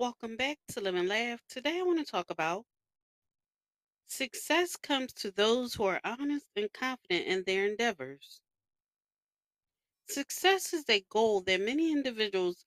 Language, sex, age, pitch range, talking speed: English, female, 40-59, 210-315 Hz, 145 wpm